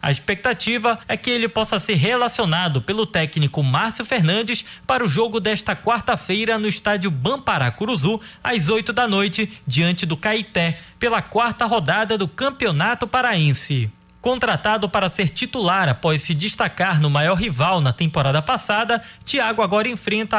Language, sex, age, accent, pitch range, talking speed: Portuguese, male, 20-39, Brazilian, 175-235 Hz, 145 wpm